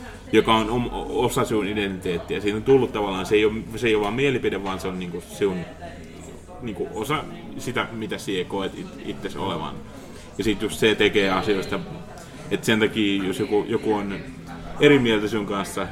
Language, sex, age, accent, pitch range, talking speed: Finnish, male, 30-49, native, 95-120 Hz, 185 wpm